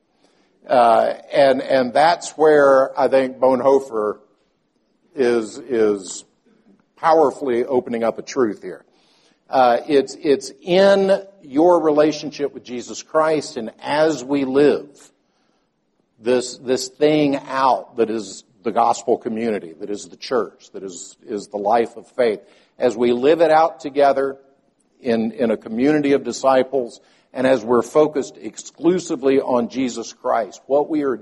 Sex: male